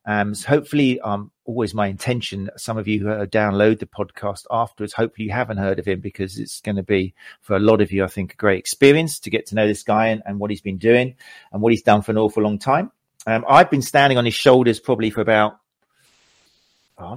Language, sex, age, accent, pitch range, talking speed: English, male, 40-59, British, 100-115 Hz, 240 wpm